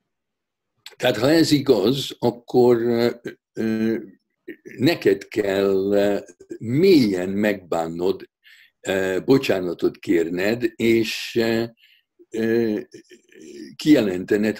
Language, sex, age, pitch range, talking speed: Hungarian, male, 60-79, 100-160 Hz, 60 wpm